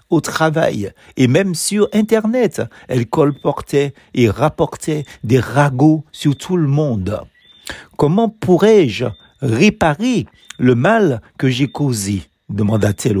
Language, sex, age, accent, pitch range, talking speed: French, male, 60-79, French, 110-165 Hz, 115 wpm